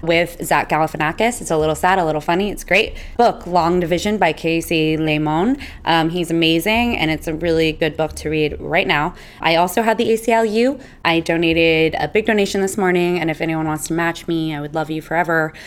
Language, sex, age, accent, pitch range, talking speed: English, female, 20-39, American, 155-190 Hz, 210 wpm